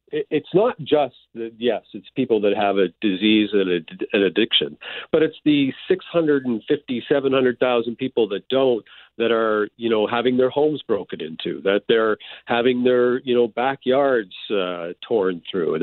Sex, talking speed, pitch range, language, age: male, 185 wpm, 110-140 Hz, English, 50-69